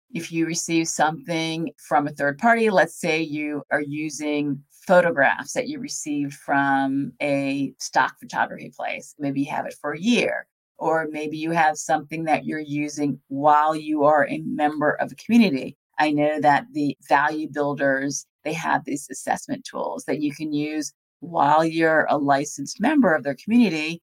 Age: 40-59